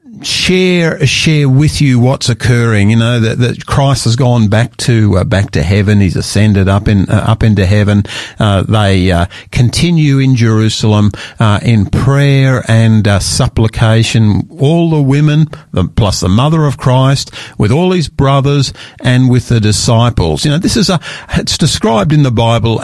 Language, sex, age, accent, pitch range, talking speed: English, male, 50-69, Australian, 100-130 Hz, 175 wpm